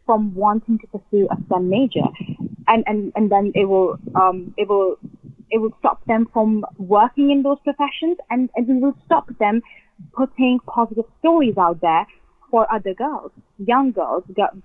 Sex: female